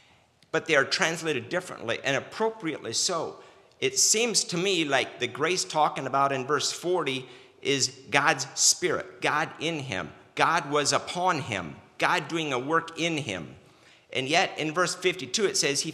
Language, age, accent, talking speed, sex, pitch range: English, 50-69, American, 165 wpm, male, 130-160 Hz